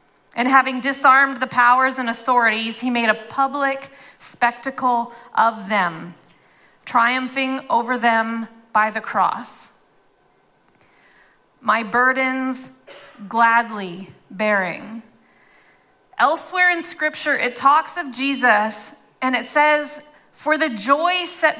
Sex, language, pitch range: female, English, 230-290 Hz